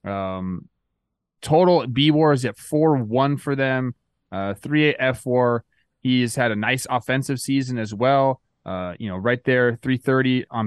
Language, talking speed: English, 155 wpm